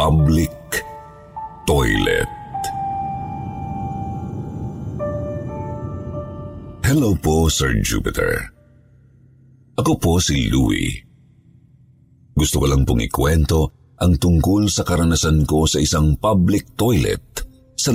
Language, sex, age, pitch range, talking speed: Filipino, male, 50-69, 75-125 Hz, 85 wpm